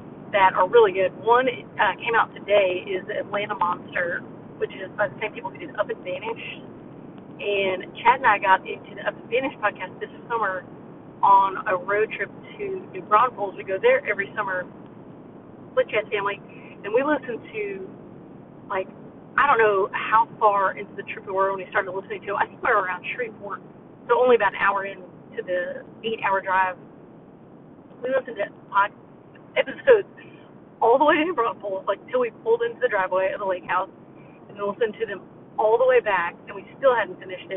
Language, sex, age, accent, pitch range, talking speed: English, female, 40-59, American, 190-265 Hz, 195 wpm